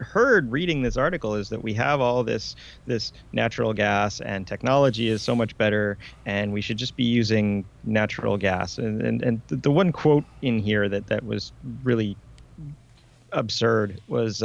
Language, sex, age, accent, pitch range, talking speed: English, male, 30-49, American, 105-125 Hz, 170 wpm